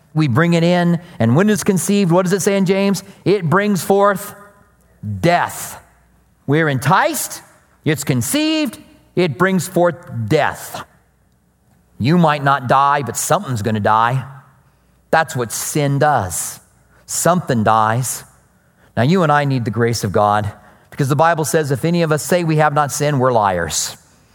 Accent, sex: American, male